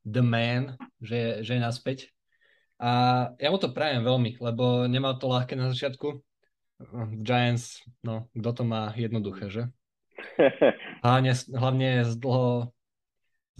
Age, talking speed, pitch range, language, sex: 20-39, 130 wpm, 110-125 Hz, Slovak, male